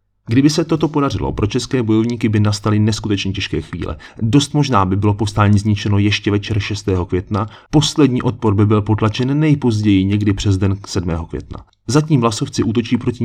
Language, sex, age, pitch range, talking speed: Czech, male, 30-49, 95-120 Hz, 170 wpm